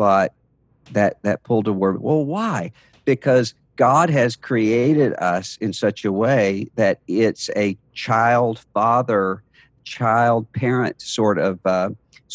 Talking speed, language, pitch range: 130 wpm, English, 105-135 Hz